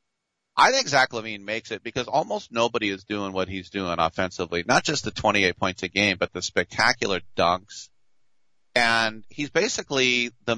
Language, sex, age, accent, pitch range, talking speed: English, male, 40-59, American, 95-120 Hz, 170 wpm